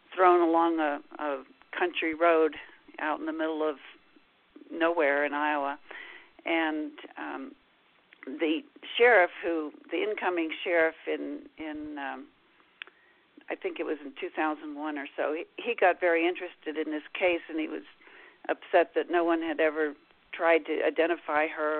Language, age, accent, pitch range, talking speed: English, 50-69, American, 155-235 Hz, 150 wpm